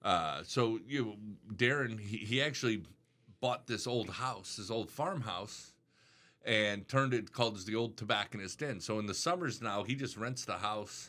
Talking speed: 180 wpm